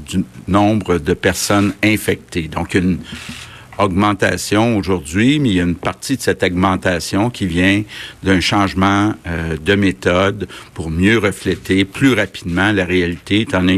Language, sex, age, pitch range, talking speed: French, male, 60-79, 95-110 Hz, 150 wpm